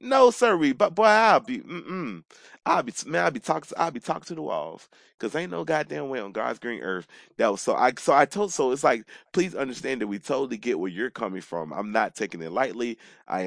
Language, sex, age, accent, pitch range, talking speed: English, male, 30-49, American, 95-150 Hz, 240 wpm